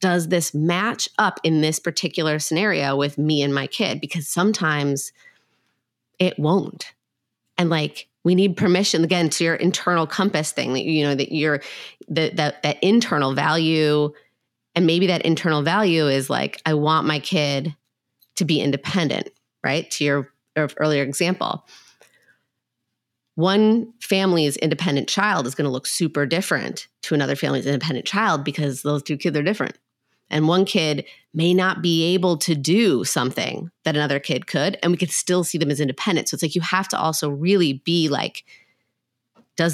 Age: 30-49